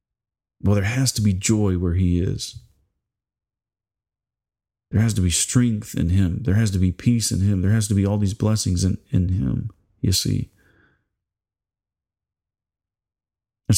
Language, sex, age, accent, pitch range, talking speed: English, male, 40-59, American, 95-110 Hz, 155 wpm